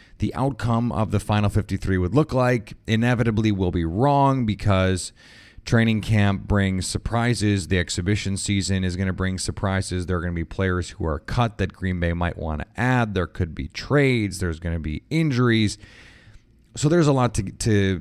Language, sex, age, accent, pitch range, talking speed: English, male, 30-49, American, 90-115 Hz, 190 wpm